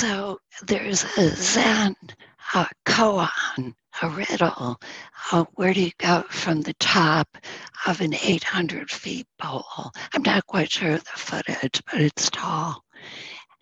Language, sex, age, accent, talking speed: English, female, 60-79, American, 130 wpm